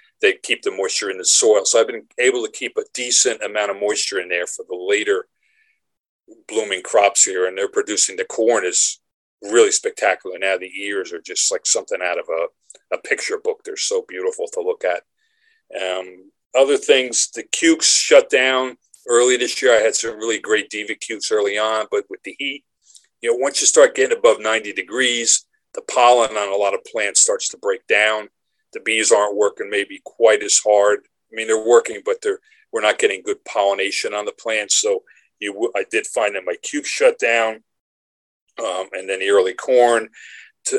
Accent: American